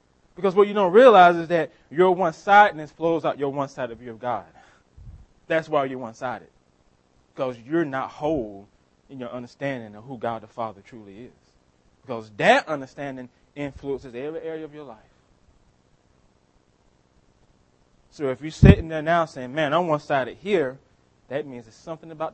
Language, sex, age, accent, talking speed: English, male, 20-39, American, 160 wpm